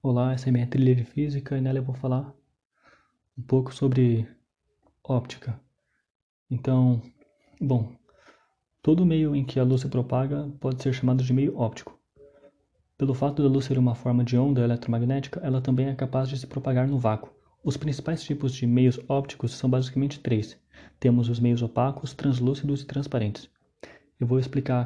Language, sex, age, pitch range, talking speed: Slovak, male, 20-39, 120-140 Hz, 170 wpm